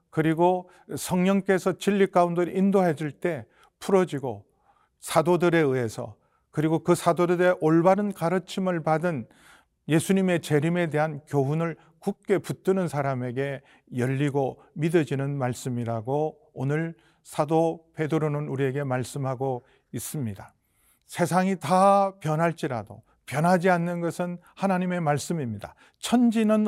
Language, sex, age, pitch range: Korean, male, 40-59, 135-175 Hz